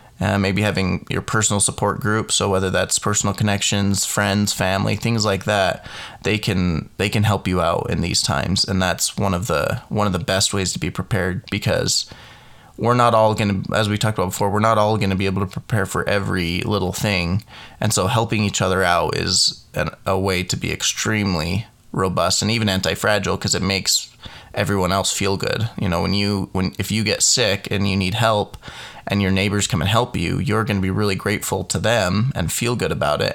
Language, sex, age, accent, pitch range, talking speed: English, male, 20-39, American, 95-110 Hz, 215 wpm